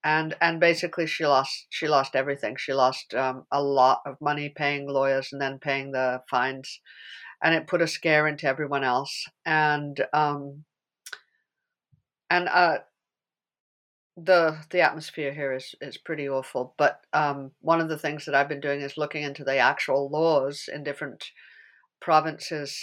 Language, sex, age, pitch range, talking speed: English, female, 60-79, 135-165 Hz, 160 wpm